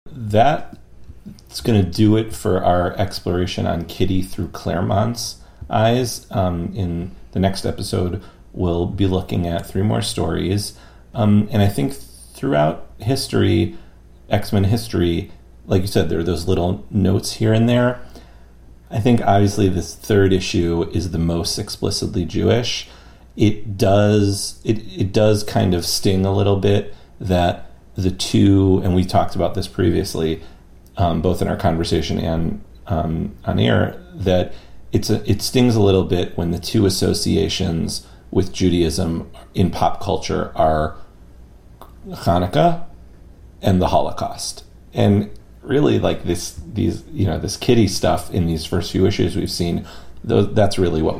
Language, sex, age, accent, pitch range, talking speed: English, male, 40-59, American, 85-105 Hz, 145 wpm